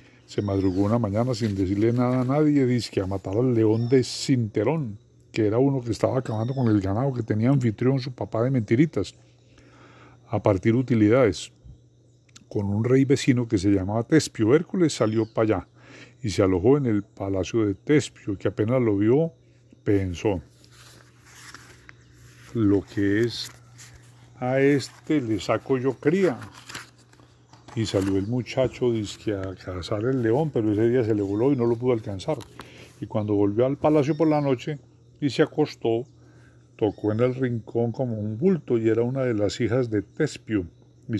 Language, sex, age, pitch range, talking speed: Spanish, male, 40-59, 110-135 Hz, 170 wpm